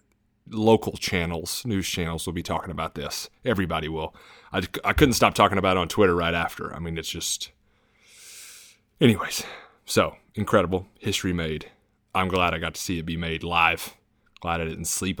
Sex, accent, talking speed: male, American, 180 wpm